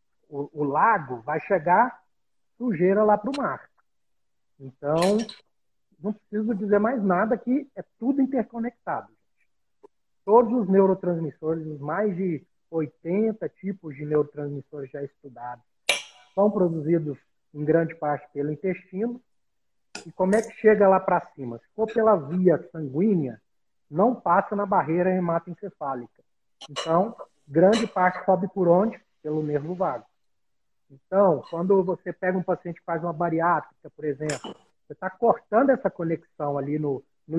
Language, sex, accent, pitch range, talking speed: Portuguese, male, Brazilian, 155-210 Hz, 135 wpm